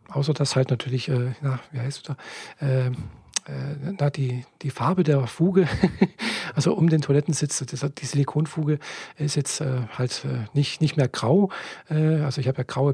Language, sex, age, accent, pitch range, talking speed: German, male, 40-59, German, 135-160 Hz, 160 wpm